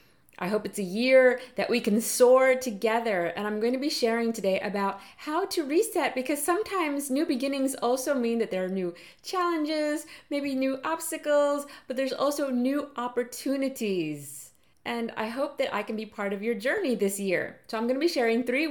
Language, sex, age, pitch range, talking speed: English, female, 30-49, 205-265 Hz, 190 wpm